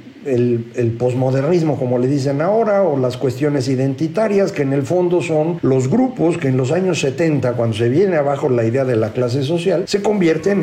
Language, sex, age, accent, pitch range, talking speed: Spanish, male, 50-69, Mexican, 120-145 Hz, 200 wpm